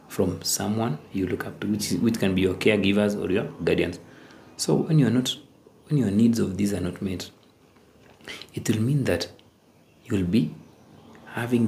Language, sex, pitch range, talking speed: English, male, 100-125 Hz, 185 wpm